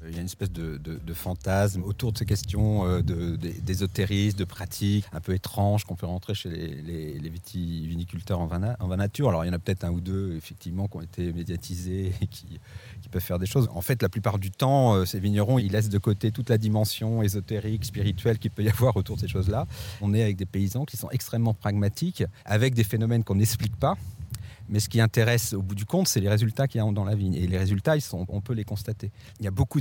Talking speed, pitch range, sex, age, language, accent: 245 wpm, 95-110 Hz, male, 40-59, French, French